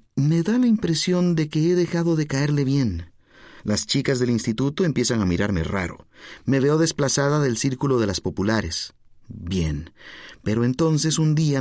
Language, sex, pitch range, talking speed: Spanish, male, 105-150 Hz, 165 wpm